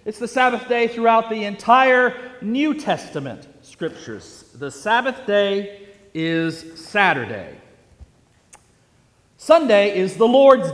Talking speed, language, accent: 105 wpm, English, American